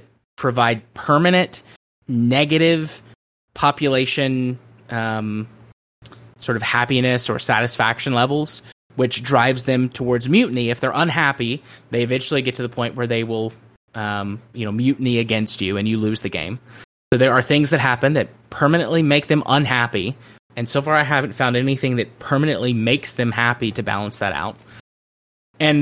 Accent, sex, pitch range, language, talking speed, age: American, male, 115-140 Hz, English, 155 wpm, 20-39